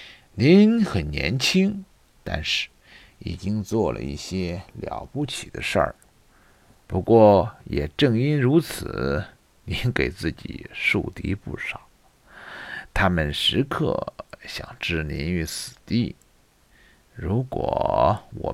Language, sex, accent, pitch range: Chinese, male, native, 100-165 Hz